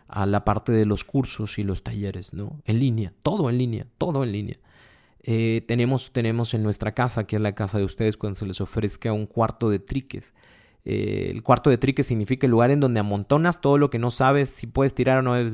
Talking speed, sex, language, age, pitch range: 230 wpm, male, Spanish, 30-49, 105-120 Hz